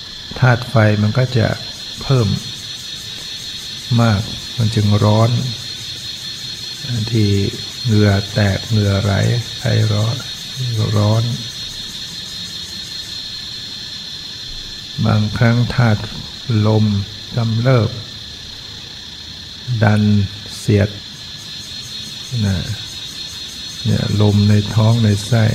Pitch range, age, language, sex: 105-115 Hz, 60-79, Thai, male